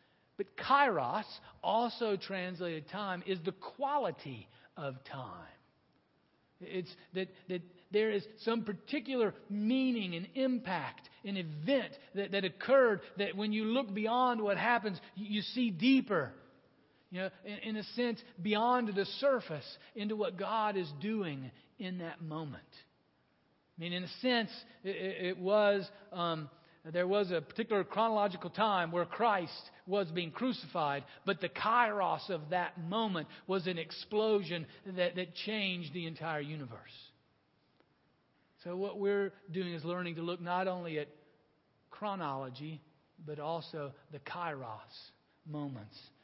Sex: male